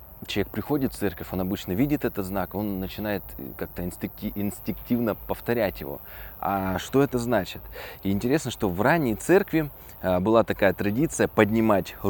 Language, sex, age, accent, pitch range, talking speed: Russian, male, 20-39, native, 90-110 Hz, 140 wpm